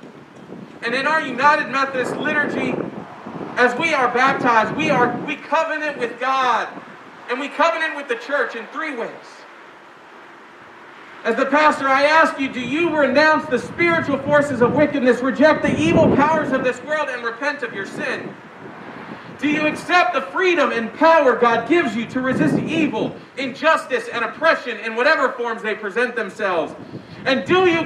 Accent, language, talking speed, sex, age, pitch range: American, English, 165 wpm, male, 40-59, 245-305 Hz